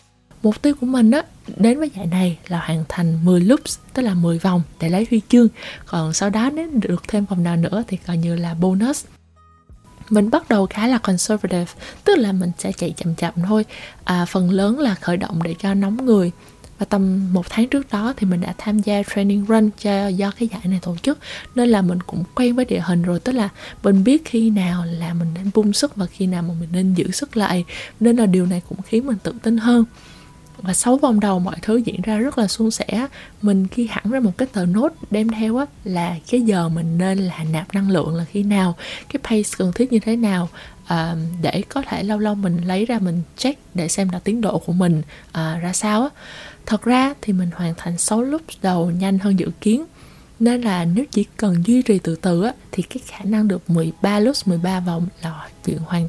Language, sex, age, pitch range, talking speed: Vietnamese, female, 20-39, 175-225 Hz, 230 wpm